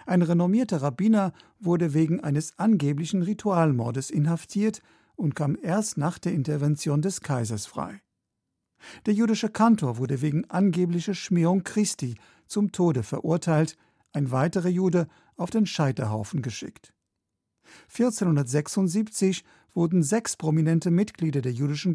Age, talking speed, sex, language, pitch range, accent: 50-69, 120 wpm, male, German, 145-190 Hz, German